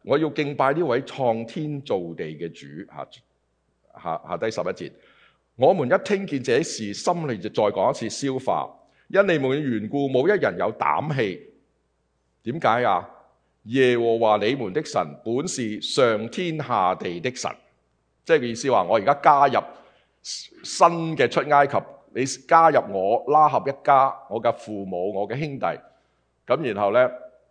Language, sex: English, male